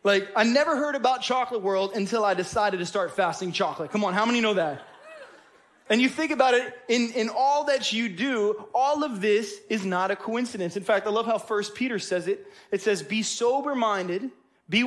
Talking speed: 210 wpm